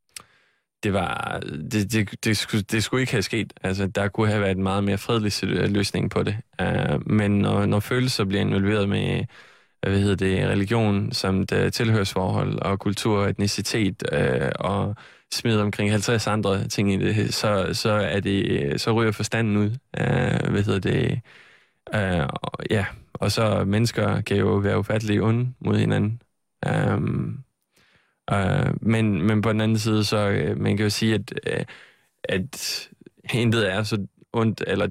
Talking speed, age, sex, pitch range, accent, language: 160 wpm, 20-39, male, 100-110 Hz, native, Danish